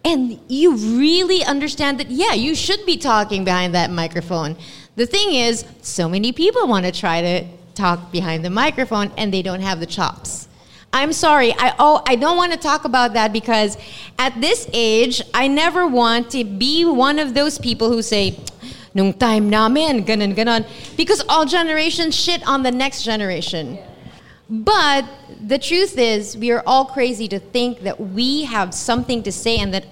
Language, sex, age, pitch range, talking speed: English, female, 30-49, 205-300 Hz, 180 wpm